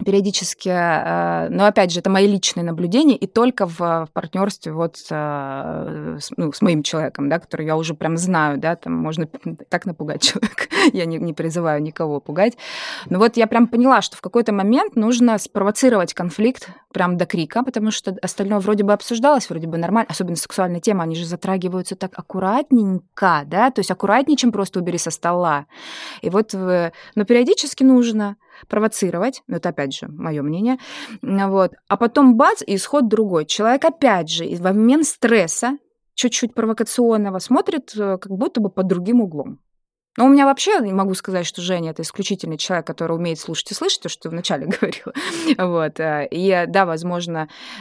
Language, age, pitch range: Russian, 20-39, 170-230 Hz